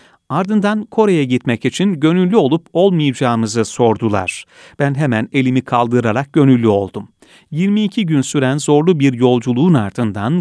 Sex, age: male, 40-59